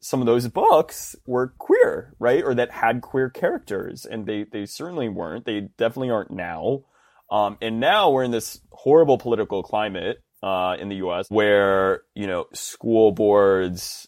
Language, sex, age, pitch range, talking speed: English, male, 20-39, 90-115 Hz, 165 wpm